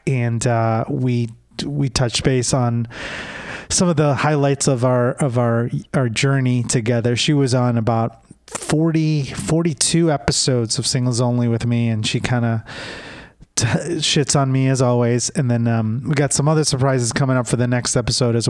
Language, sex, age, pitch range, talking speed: English, male, 30-49, 120-145 Hz, 180 wpm